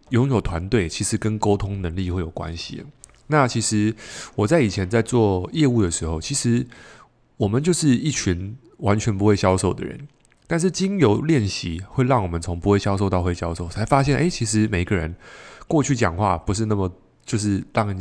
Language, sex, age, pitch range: Chinese, male, 20-39, 95-130 Hz